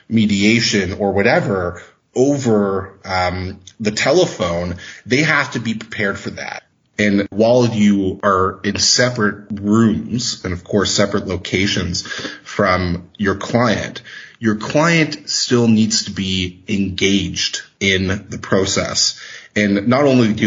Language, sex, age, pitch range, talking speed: English, male, 30-49, 95-110 Hz, 125 wpm